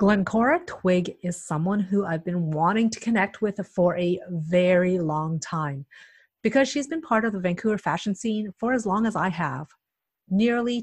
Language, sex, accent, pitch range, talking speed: English, female, American, 180-260 Hz, 175 wpm